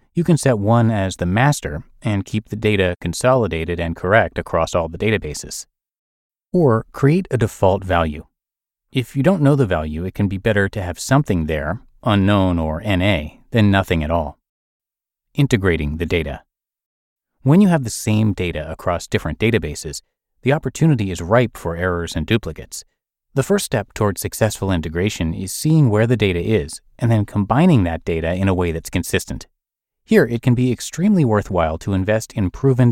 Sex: male